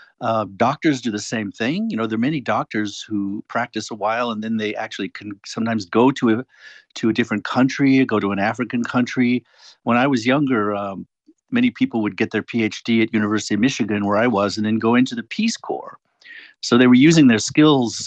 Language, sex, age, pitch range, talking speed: English, male, 50-69, 105-130 Hz, 215 wpm